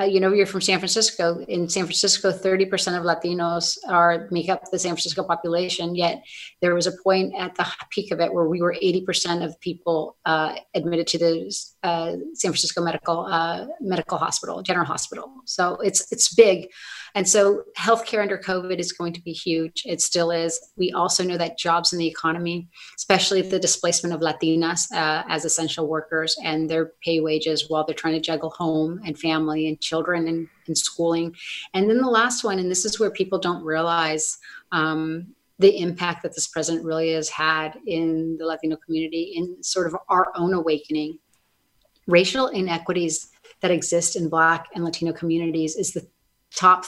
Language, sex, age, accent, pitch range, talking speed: English, female, 30-49, American, 165-190 Hz, 185 wpm